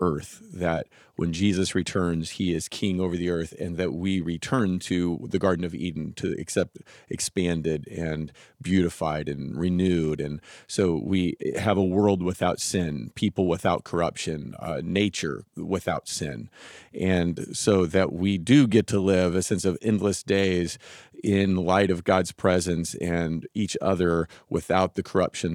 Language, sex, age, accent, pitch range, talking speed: English, male, 40-59, American, 85-105 Hz, 155 wpm